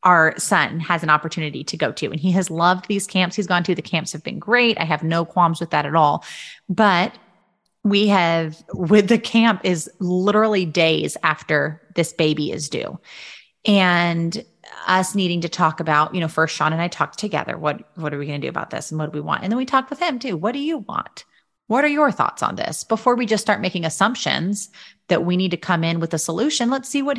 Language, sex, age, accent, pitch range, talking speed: English, female, 30-49, American, 165-225 Hz, 235 wpm